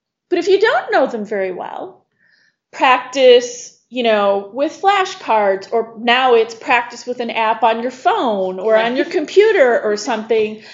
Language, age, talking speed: English, 30-49, 160 wpm